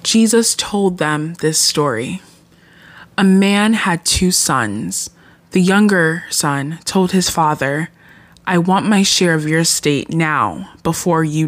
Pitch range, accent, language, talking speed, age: 155-195 Hz, American, English, 135 wpm, 20-39